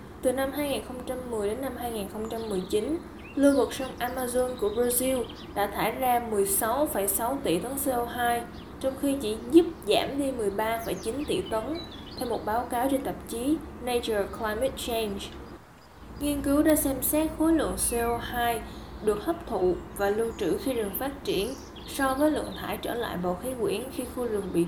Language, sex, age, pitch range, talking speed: Vietnamese, female, 10-29, 220-280 Hz, 170 wpm